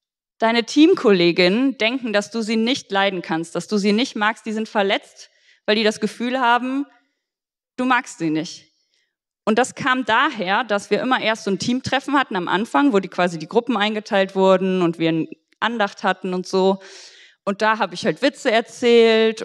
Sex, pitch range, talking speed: female, 185-245 Hz, 185 wpm